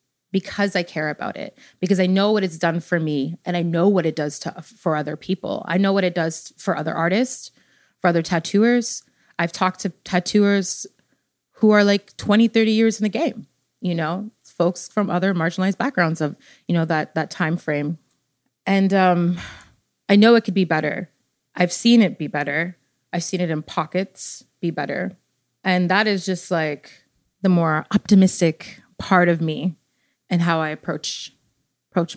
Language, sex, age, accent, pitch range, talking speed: English, female, 30-49, American, 160-195 Hz, 180 wpm